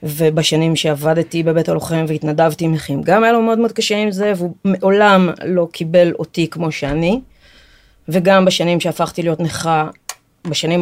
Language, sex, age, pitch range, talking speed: Hebrew, female, 30-49, 160-200 Hz, 155 wpm